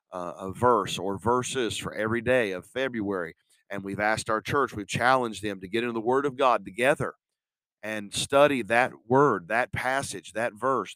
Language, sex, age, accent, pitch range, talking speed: English, male, 50-69, American, 115-150 Hz, 180 wpm